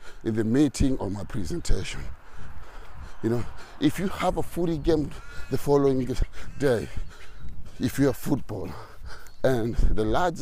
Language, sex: English, male